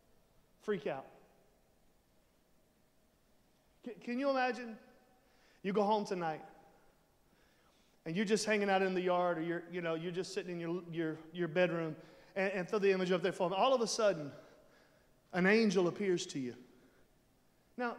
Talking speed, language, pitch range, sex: 160 wpm, English, 195-290 Hz, male